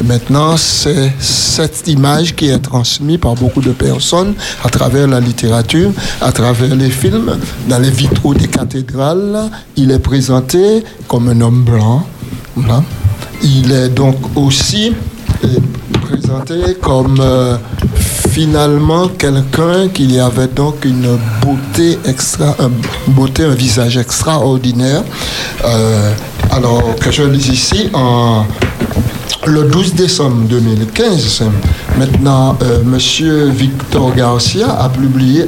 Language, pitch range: French, 120-150 Hz